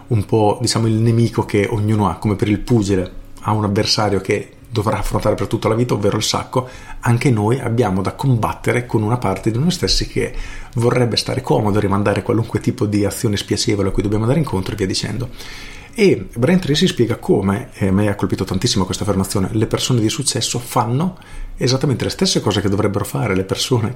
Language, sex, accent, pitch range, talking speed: Italian, male, native, 100-125 Hz, 205 wpm